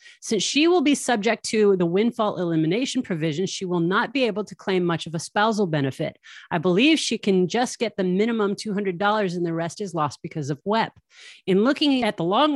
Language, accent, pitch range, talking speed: English, American, 175-235 Hz, 210 wpm